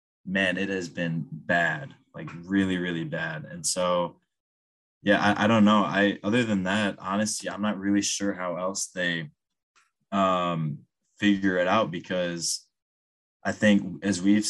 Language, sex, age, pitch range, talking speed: English, male, 20-39, 90-100 Hz, 155 wpm